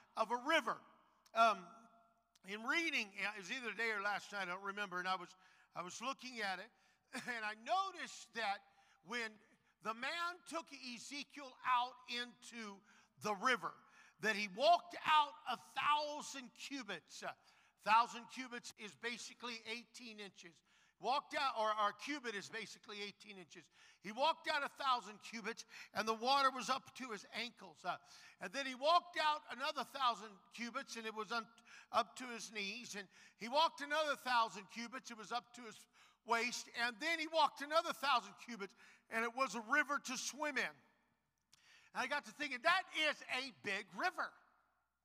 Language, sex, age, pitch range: English, male, 50-69, 220-275 Hz